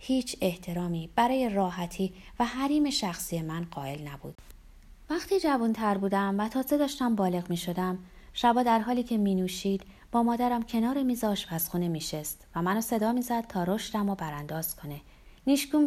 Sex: female